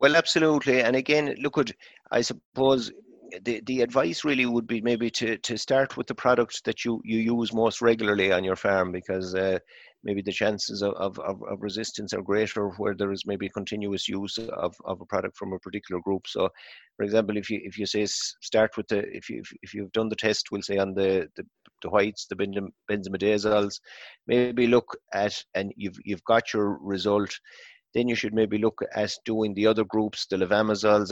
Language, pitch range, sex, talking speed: English, 95-110 Hz, male, 200 wpm